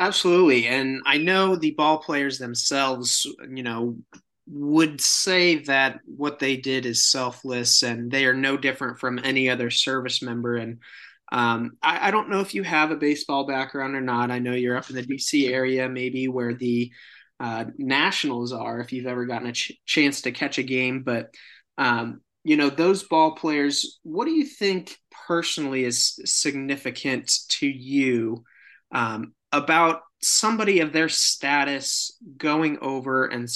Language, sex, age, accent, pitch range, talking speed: English, male, 20-39, American, 125-150 Hz, 165 wpm